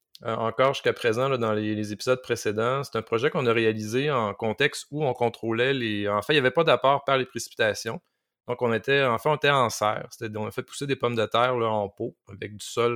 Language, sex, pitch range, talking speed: French, male, 110-135 Hz, 255 wpm